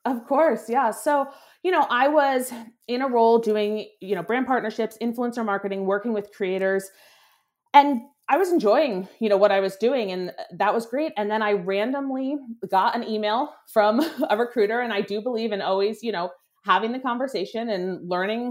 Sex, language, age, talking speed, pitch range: female, English, 30-49, 190 wpm, 190-235 Hz